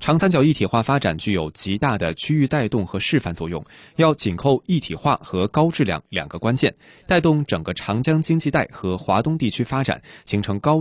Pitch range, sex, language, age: 95-145 Hz, male, Chinese, 20-39